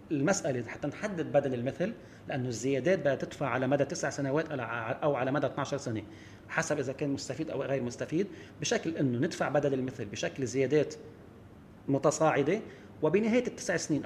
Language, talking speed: English, 160 wpm